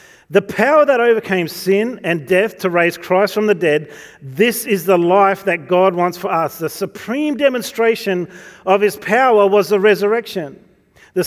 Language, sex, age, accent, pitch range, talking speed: English, male, 40-59, Australian, 150-200 Hz, 170 wpm